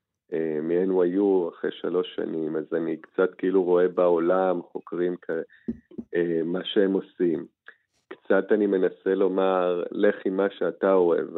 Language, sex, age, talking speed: Hebrew, male, 40-59, 140 wpm